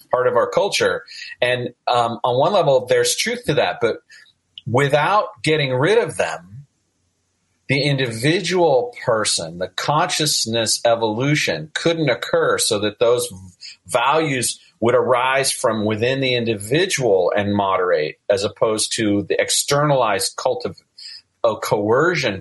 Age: 40-59